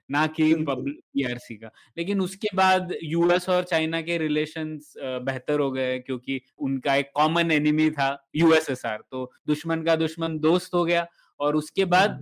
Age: 20-39